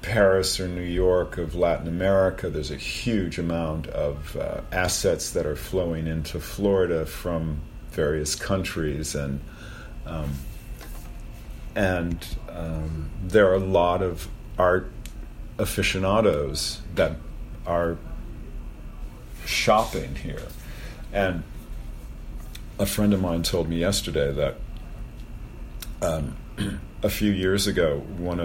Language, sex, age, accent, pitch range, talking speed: English, male, 50-69, American, 75-95 Hz, 110 wpm